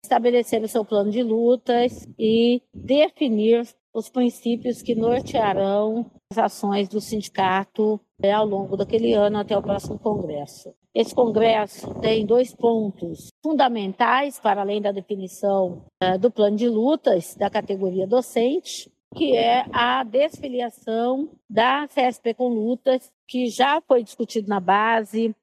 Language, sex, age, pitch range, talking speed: Portuguese, female, 50-69, 215-255 Hz, 130 wpm